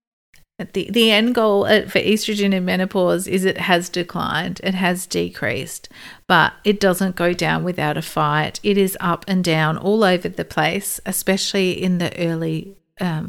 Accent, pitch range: Australian, 165-200 Hz